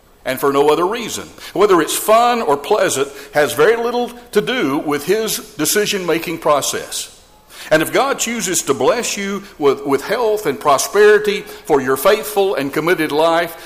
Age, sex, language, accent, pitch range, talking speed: 60-79, male, English, American, 140-200 Hz, 165 wpm